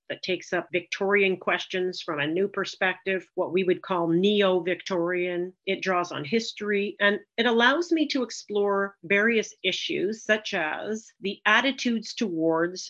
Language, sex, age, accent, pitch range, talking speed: English, female, 50-69, American, 175-220 Hz, 145 wpm